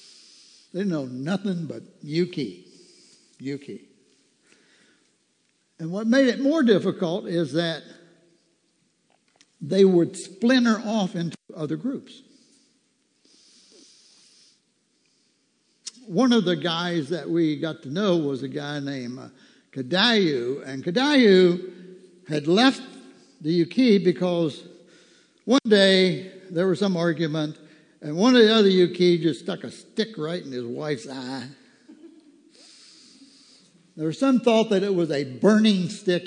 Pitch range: 165-230 Hz